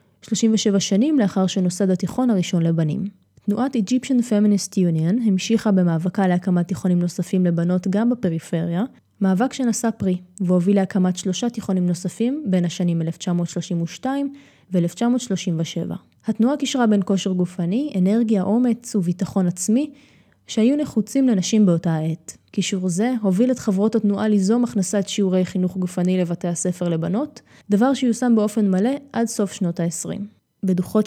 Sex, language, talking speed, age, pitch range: female, Hebrew, 130 wpm, 20-39, 180-230 Hz